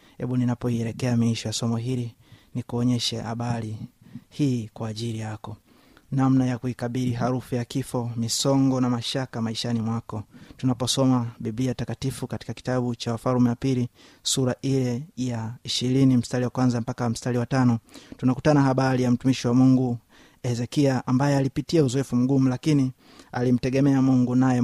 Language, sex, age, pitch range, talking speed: Swahili, male, 20-39, 120-135 Hz, 155 wpm